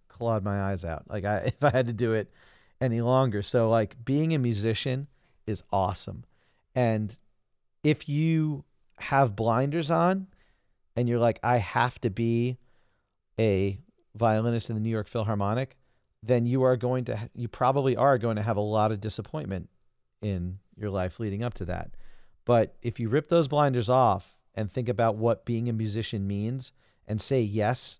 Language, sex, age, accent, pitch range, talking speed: English, male, 40-59, American, 105-130 Hz, 175 wpm